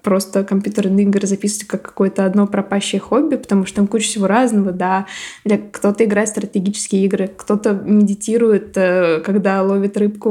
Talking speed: 150 wpm